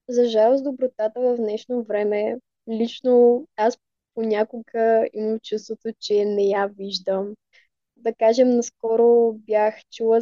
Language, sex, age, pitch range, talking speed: Bulgarian, female, 20-39, 220-255 Hz, 125 wpm